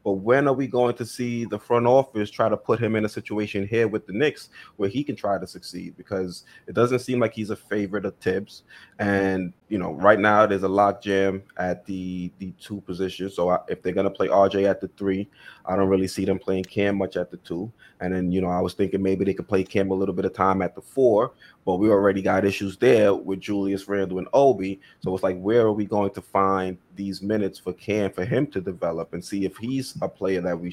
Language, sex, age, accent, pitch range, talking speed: English, male, 20-39, American, 95-105 Hz, 250 wpm